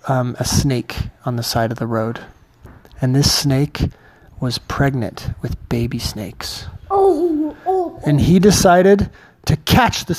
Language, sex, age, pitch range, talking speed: English, male, 30-49, 125-160 Hz, 135 wpm